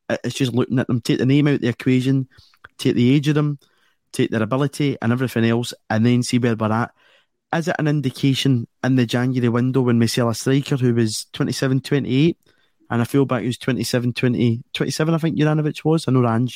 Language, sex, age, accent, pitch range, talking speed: English, male, 20-39, British, 115-135 Hz, 220 wpm